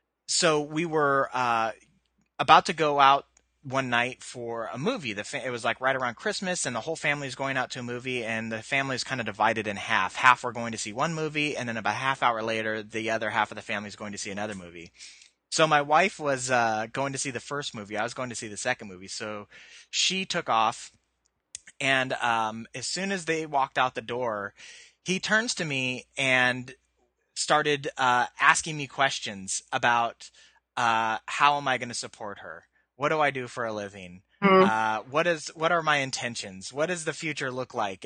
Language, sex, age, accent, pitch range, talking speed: English, male, 30-49, American, 115-160 Hz, 215 wpm